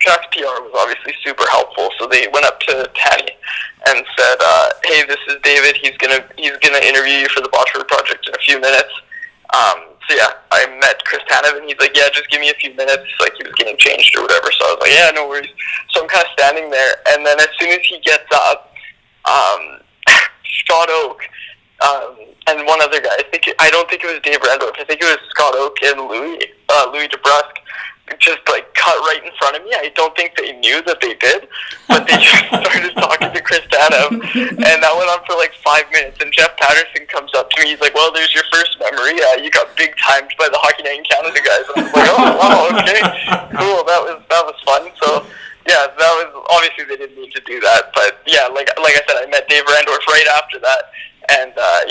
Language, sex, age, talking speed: English, male, 20-39, 235 wpm